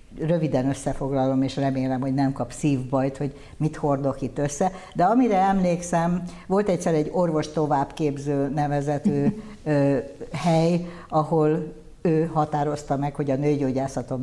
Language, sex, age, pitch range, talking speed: Hungarian, female, 60-79, 135-155 Hz, 125 wpm